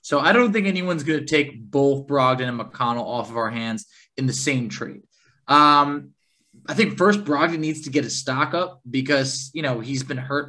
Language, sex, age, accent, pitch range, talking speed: English, male, 20-39, American, 130-155 Hz, 210 wpm